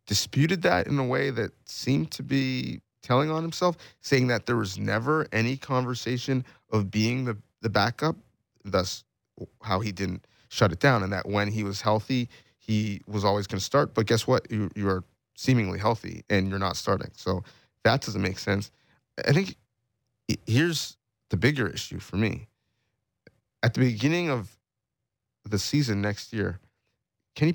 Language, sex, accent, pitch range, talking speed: English, male, American, 105-140 Hz, 170 wpm